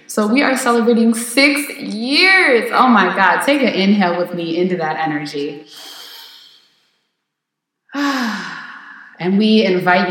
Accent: American